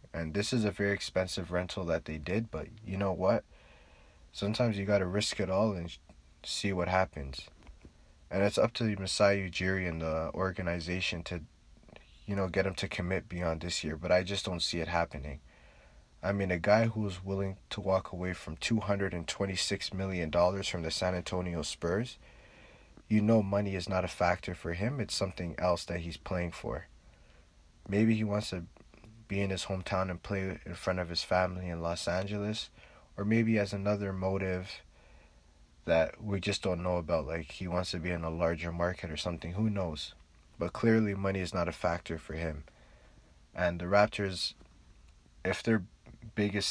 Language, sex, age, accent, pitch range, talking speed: English, male, 20-39, American, 80-100 Hz, 185 wpm